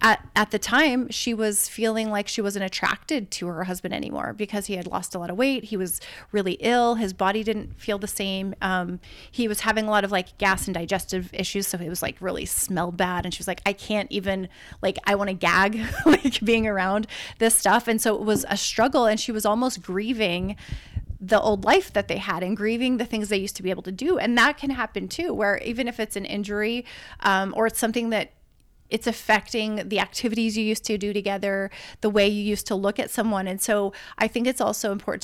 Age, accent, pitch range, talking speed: 30-49, American, 195-230 Hz, 235 wpm